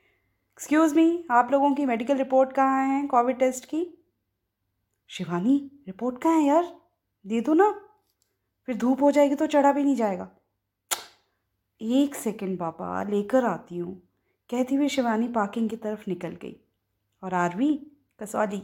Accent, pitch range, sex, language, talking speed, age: native, 185-285 Hz, female, Hindi, 150 wpm, 20-39